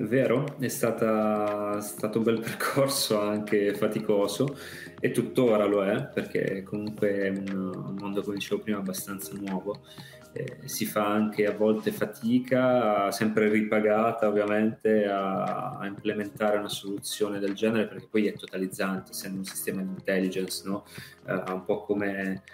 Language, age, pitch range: Italian, 20-39, 100-110 Hz